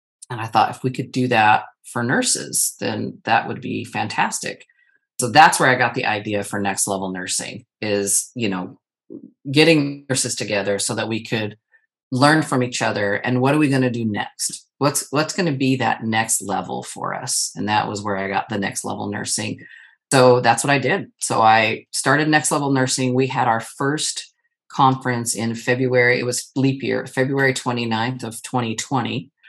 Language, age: English, 40-59